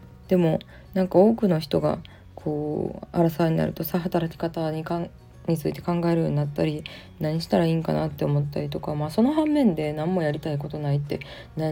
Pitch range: 145-180 Hz